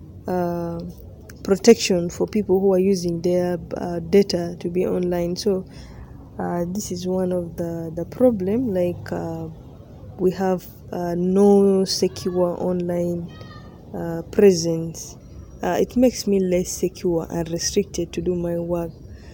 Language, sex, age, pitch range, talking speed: English, female, 20-39, 170-195 Hz, 135 wpm